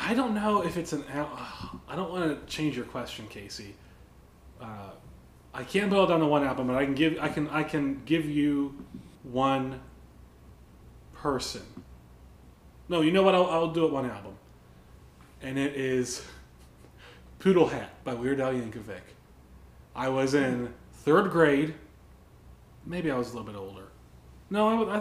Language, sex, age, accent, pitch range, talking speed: English, male, 30-49, American, 110-155 Hz, 165 wpm